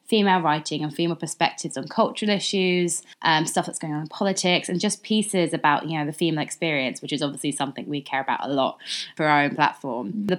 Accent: British